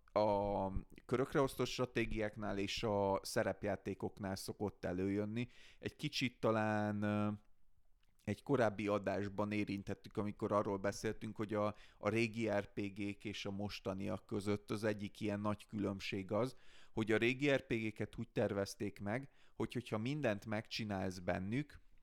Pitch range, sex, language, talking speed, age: 100-120 Hz, male, Hungarian, 130 wpm, 30-49